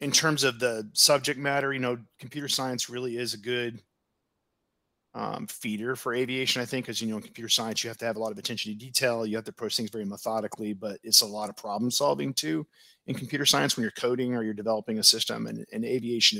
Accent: American